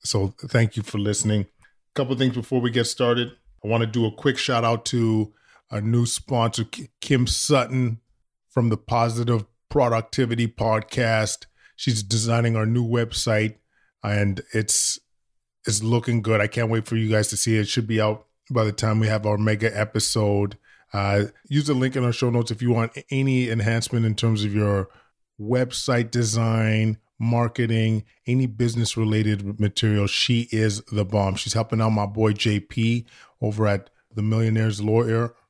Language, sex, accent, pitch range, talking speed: English, male, American, 105-120 Hz, 170 wpm